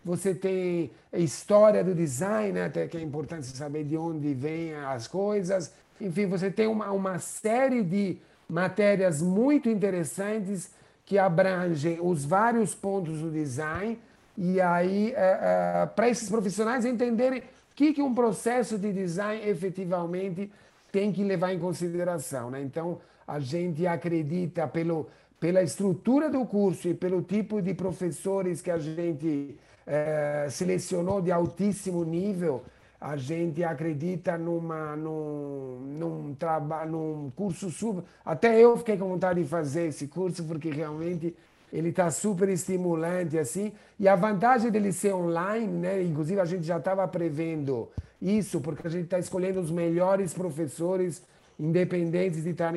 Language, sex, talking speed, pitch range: Portuguese, male, 145 wpm, 160-195 Hz